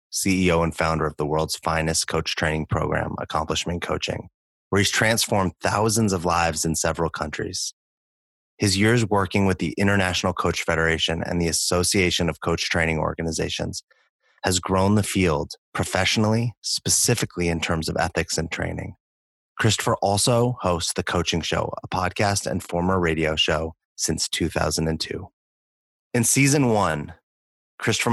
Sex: male